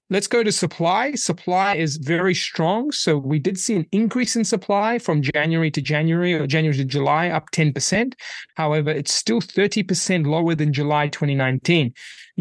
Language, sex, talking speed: English, male, 165 wpm